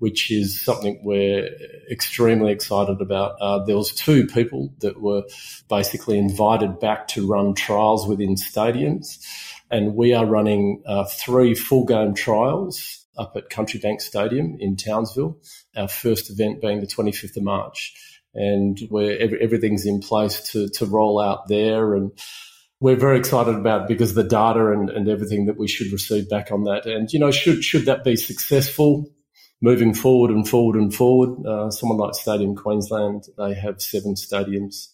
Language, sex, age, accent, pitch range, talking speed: English, male, 40-59, Australian, 100-120 Hz, 170 wpm